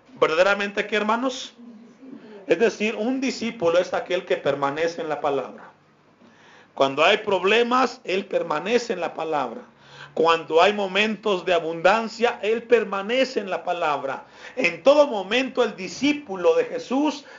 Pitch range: 175-240 Hz